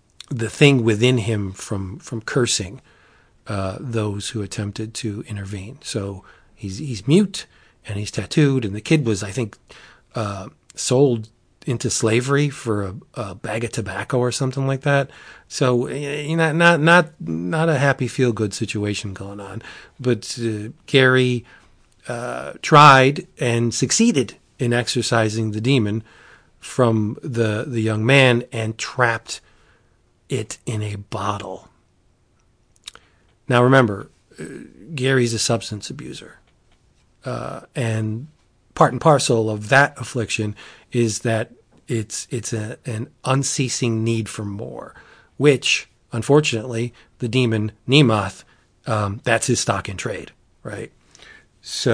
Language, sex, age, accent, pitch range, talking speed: English, male, 40-59, American, 110-135 Hz, 130 wpm